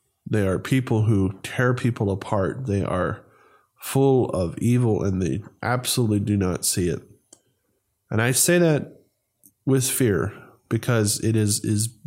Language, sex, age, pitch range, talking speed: English, male, 20-39, 105-135 Hz, 145 wpm